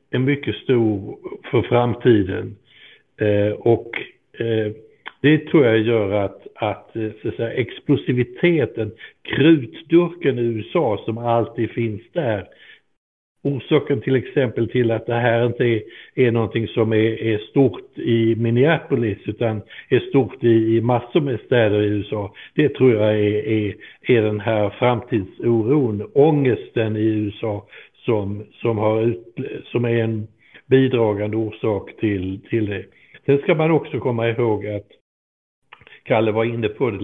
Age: 60-79